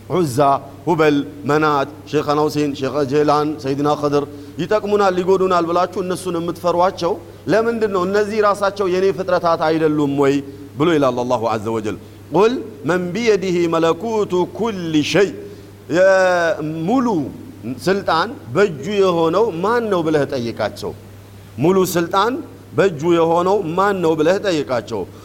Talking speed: 110 wpm